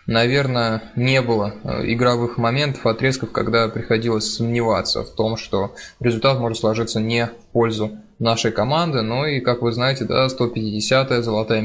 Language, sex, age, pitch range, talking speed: Russian, male, 20-39, 115-130 Hz, 150 wpm